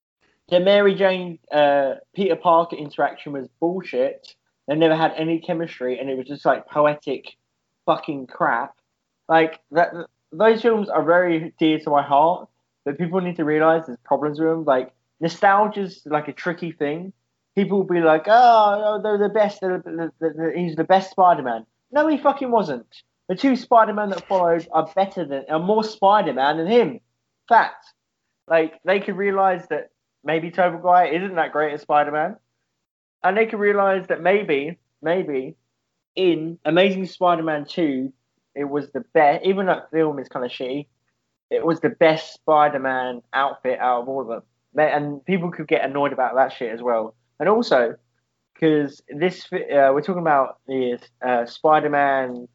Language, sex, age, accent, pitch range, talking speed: English, male, 20-39, British, 140-185 Hz, 165 wpm